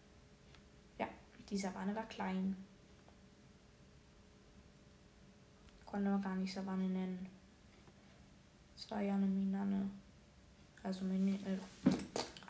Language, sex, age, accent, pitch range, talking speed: German, female, 20-39, German, 185-210 Hz, 85 wpm